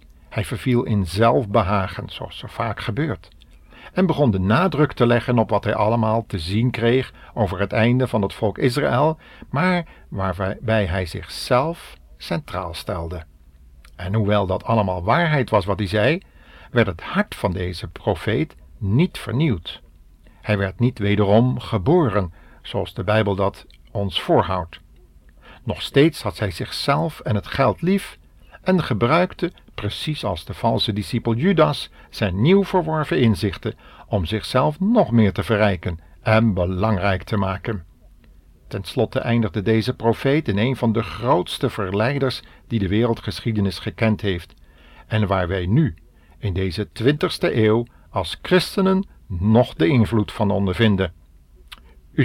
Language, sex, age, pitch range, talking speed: Dutch, male, 50-69, 95-125 Hz, 145 wpm